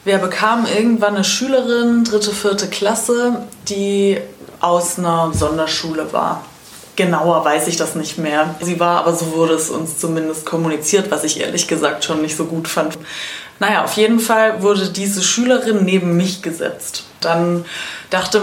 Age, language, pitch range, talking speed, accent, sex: 20-39, German, 175-215 Hz, 160 wpm, German, female